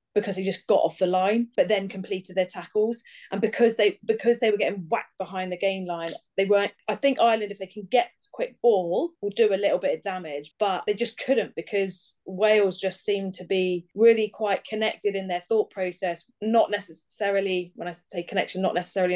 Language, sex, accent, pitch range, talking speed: English, female, British, 185-225 Hz, 210 wpm